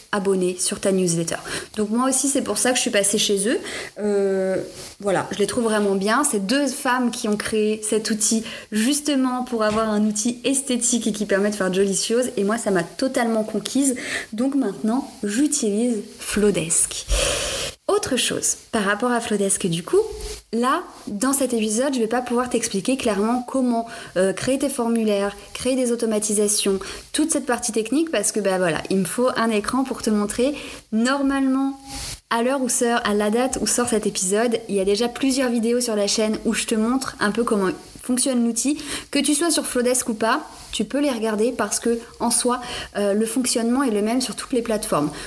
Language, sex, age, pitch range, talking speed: French, female, 20-39, 210-250 Hz, 205 wpm